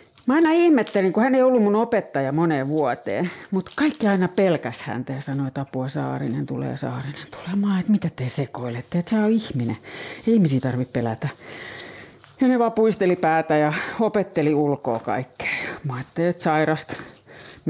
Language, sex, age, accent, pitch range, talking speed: Finnish, female, 40-59, native, 155-235 Hz, 165 wpm